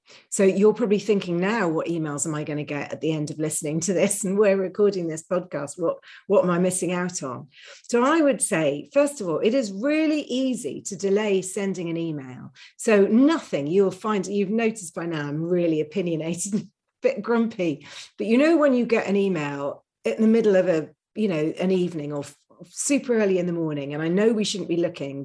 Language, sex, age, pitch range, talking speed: English, female, 40-59, 165-215 Hz, 220 wpm